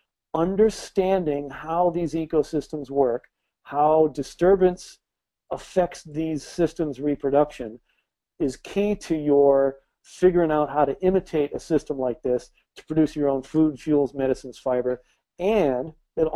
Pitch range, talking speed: 140-165 Hz, 125 wpm